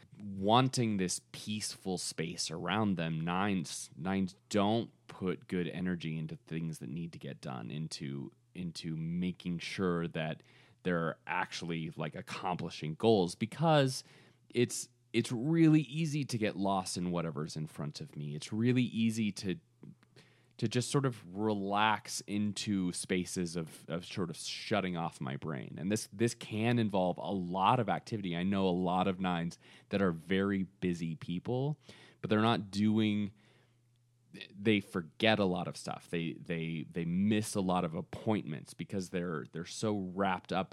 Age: 30-49